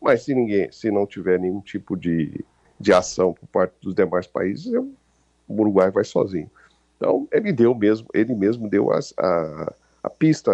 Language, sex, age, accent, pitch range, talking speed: Portuguese, male, 50-69, Brazilian, 90-115 Hz, 180 wpm